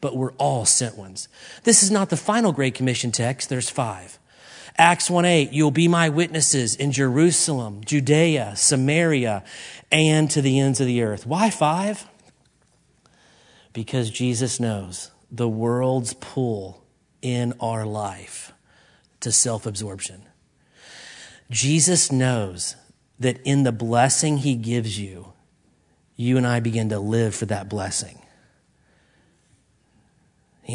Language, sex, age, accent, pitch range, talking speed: English, male, 40-59, American, 120-195 Hz, 125 wpm